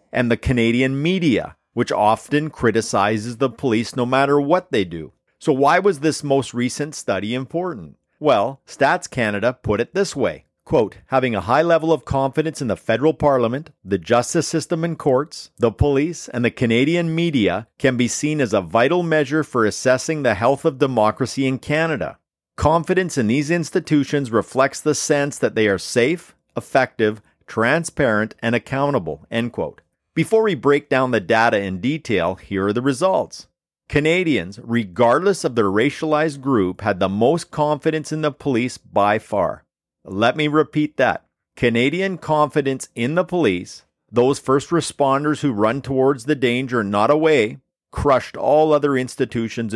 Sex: male